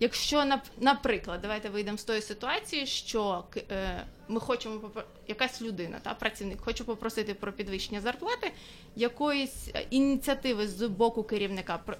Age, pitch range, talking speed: 20-39, 210-270 Hz, 115 wpm